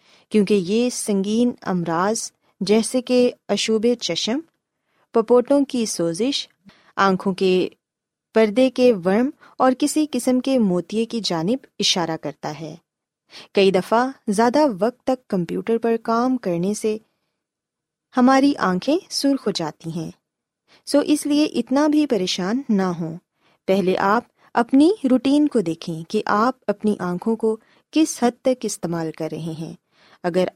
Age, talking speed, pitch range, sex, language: 20-39, 135 wpm, 185-255 Hz, female, Urdu